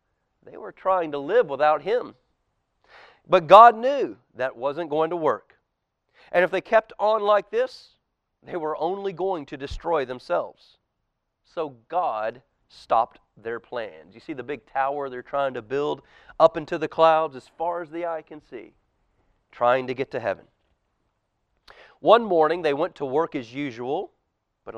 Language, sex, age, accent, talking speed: English, male, 40-59, American, 165 wpm